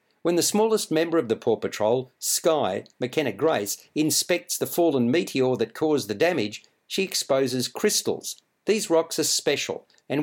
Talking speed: 160 wpm